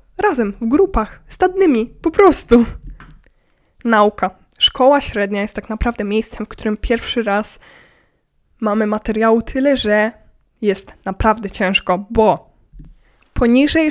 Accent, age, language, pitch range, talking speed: native, 20-39, Polish, 210-250 Hz, 110 wpm